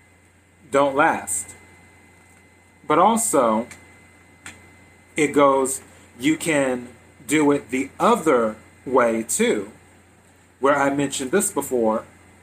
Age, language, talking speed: 30-49, English, 90 wpm